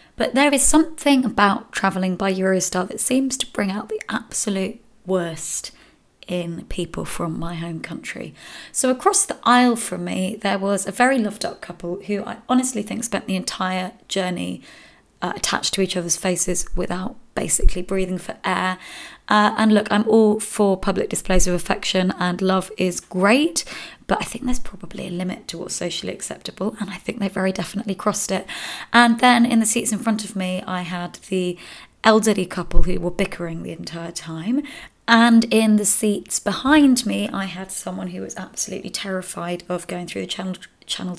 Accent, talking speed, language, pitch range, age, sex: British, 185 wpm, English, 180-225 Hz, 20-39, female